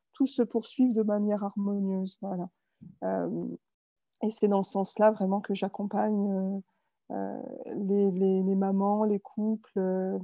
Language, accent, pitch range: French, French, 195-225 Hz